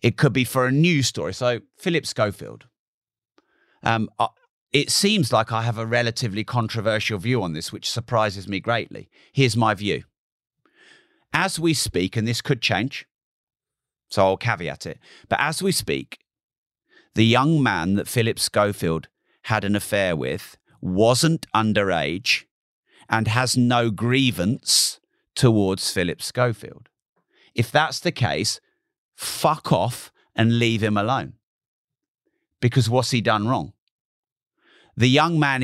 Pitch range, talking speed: 110-130 Hz, 135 wpm